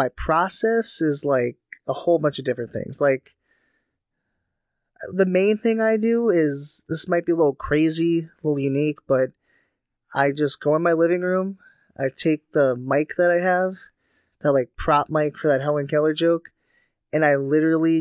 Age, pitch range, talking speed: 20-39, 130-155 Hz, 175 wpm